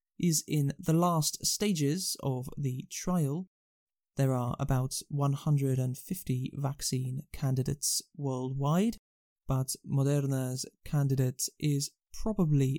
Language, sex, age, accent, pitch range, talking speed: English, male, 20-39, British, 130-150 Hz, 95 wpm